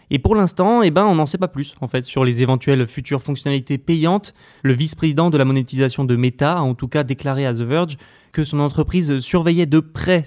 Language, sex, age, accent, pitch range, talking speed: French, male, 20-39, French, 135-165 Hz, 230 wpm